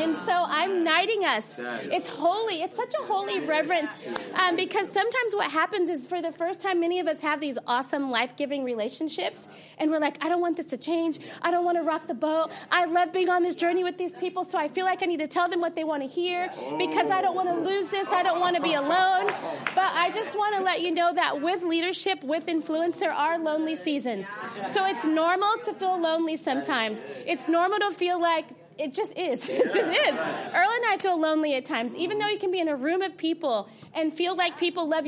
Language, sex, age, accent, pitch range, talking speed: English, female, 30-49, American, 310-365 Hz, 240 wpm